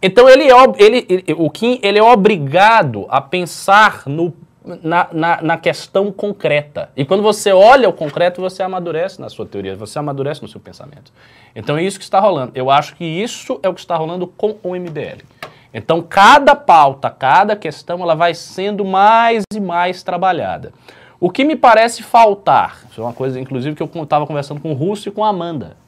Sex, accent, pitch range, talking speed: male, Brazilian, 150-210 Hz, 195 wpm